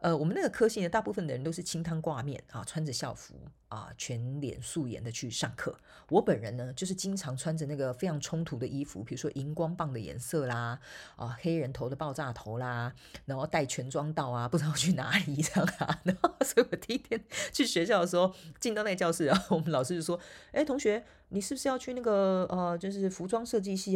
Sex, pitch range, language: female, 145-200 Hz, Chinese